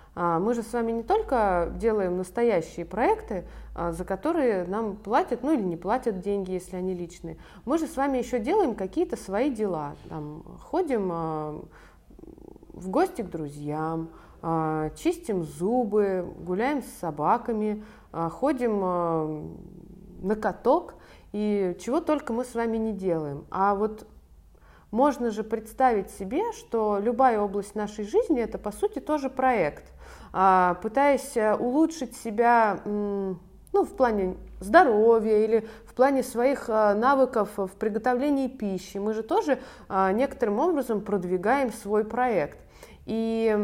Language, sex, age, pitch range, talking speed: Russian, female, 20-39, 185-250 Hz, 125 wpm